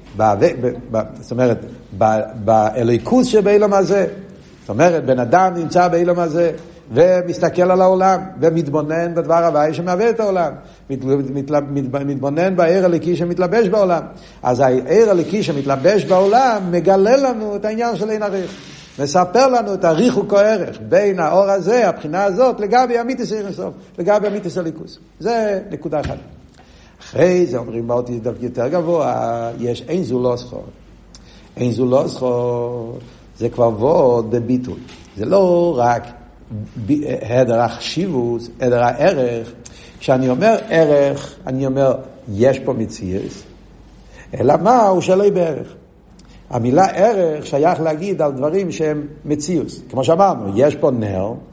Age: 70-89